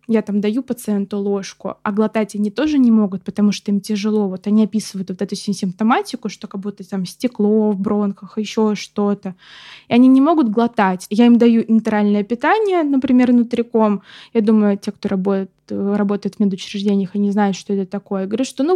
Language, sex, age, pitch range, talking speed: Russian, female, 20-39, 205-250 Hz, 190 wpm